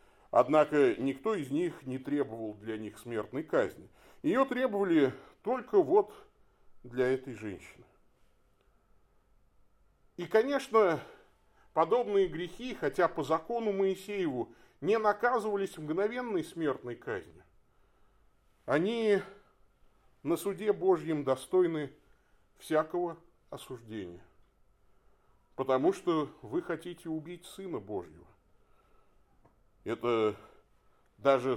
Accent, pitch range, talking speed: native, 130-215 Hz, 85 wpm